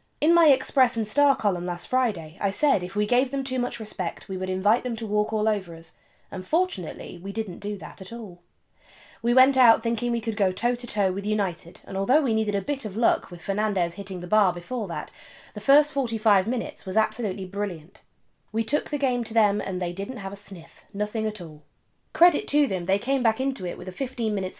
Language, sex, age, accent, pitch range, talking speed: English, female, 20-39, British, 185-245 Hz, 220 wpm